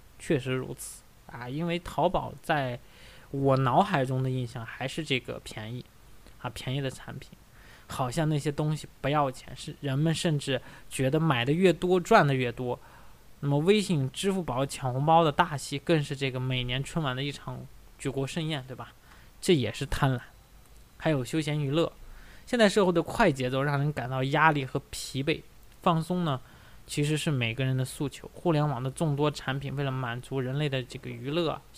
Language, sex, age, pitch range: Chinese, male, 20-39, 130-155 Hz